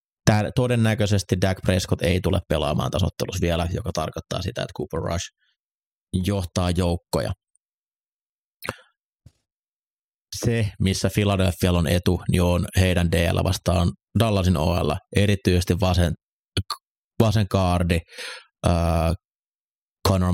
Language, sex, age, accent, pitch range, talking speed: Finnish, male, 30-49, native, 85-95 Hz, 100 wpm